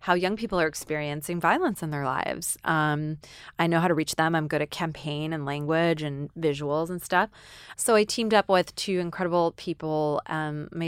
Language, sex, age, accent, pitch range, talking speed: English, female, 20-39, American, 150-175 Hz, 200 wpm